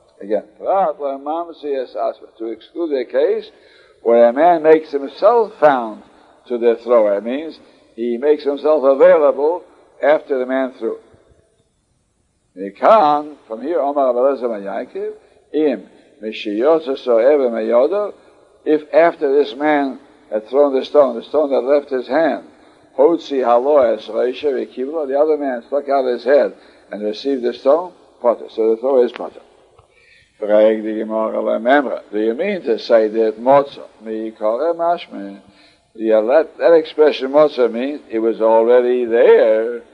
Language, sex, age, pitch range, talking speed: English, male, 60-79, 115-170 Hz, 110 wpm